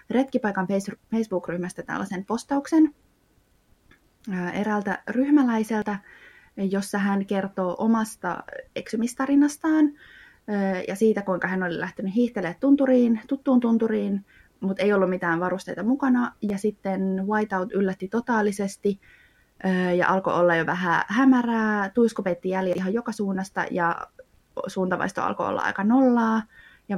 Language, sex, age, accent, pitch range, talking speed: Finnish, female, 20-39, native, 180-220 Hz, 110 wpm